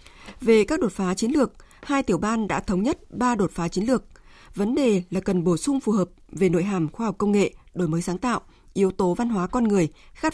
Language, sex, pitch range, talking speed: Vietnamese, female, 185-240 Hz, 250 wpm